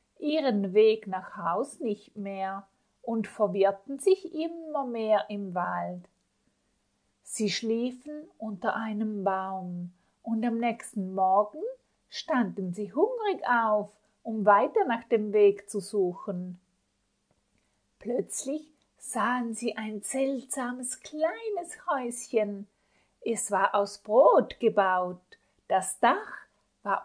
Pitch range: 205-275 Hz